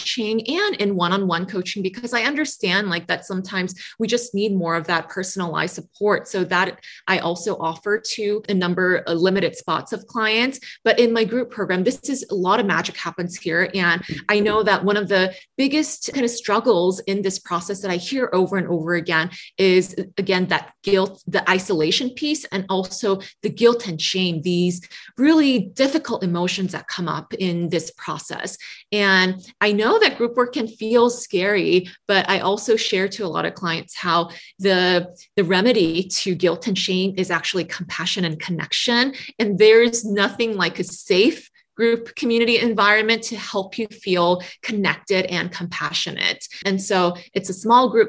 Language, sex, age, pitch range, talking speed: English, female, 20-39, 180-225 Hz, 180 wpm